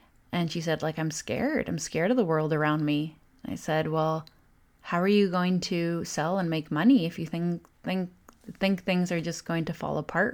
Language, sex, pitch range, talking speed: English, female, 165-195 Hz, 215 wpm